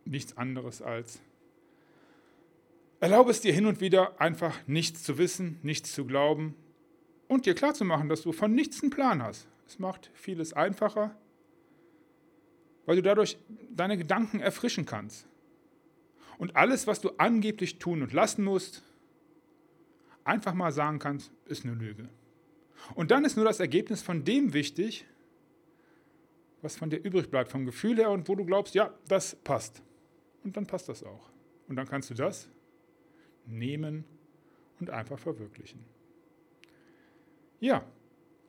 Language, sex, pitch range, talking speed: German, male, 150-210 Hz, 145 wpm